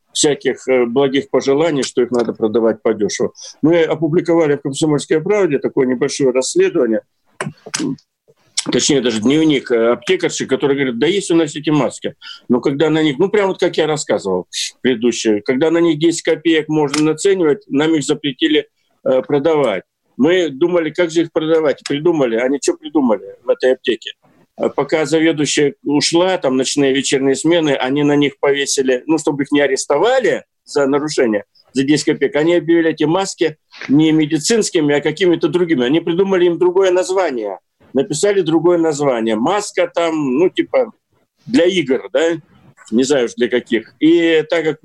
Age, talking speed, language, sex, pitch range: 50-69, 160 wpm, Russian, male, 140-175 Hz